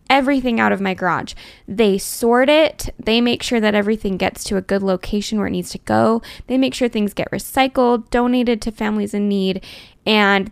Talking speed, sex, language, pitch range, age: 200 wpm, female, English, 190-230 Hz, 10-29